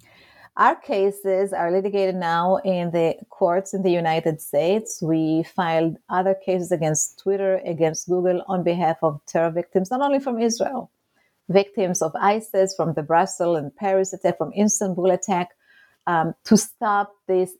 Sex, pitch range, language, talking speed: female, 160-205 Hz, English, 155 wpm